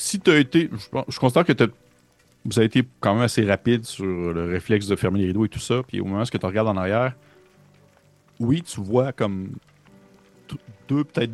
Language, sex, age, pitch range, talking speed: French, male, 30-49, 95-120 Hz, 210 wpm